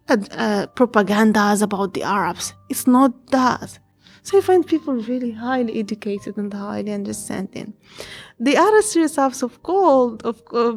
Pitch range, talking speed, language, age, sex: 220-295 Hz, 145 wpm, English, 20-39, female